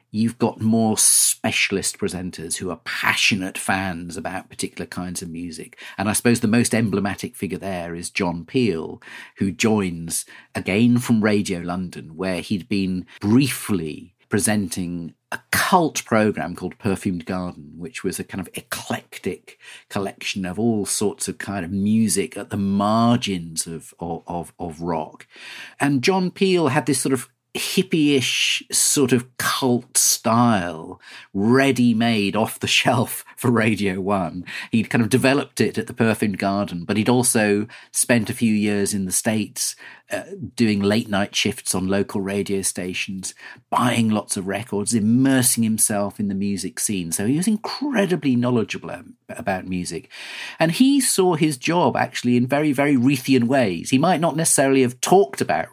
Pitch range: 95-125 Hz